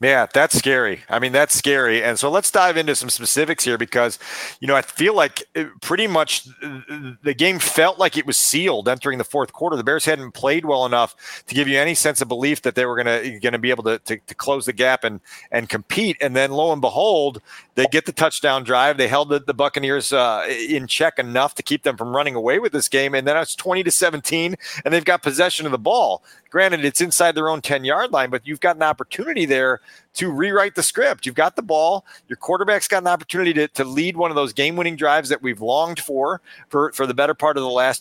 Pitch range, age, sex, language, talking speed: 125-160 Hz, 40-59, male, English, 235 wpm